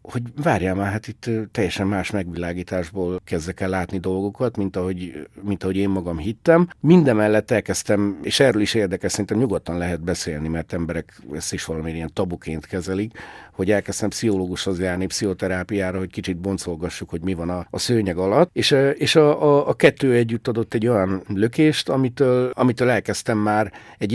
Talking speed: 165 wpm